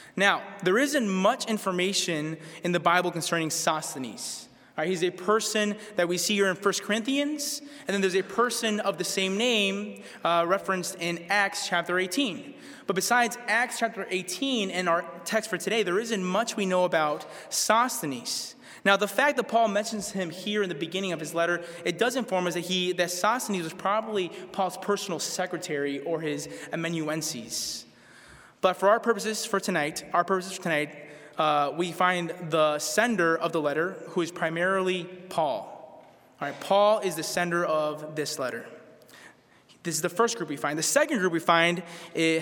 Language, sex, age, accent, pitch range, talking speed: English, male, 20-39, American, 170-210 Hz, 175 wpm